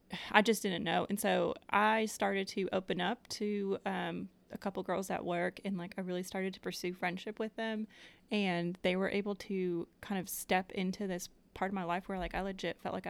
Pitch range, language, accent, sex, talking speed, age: 180-205 Hz, English, American, female, 220 wpm, 30-49